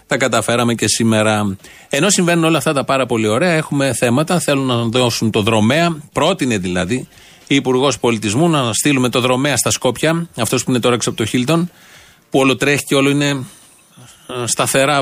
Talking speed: 165 wpm